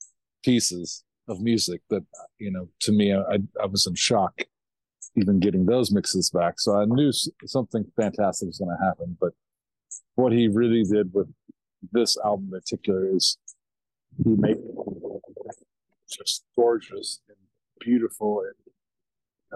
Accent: American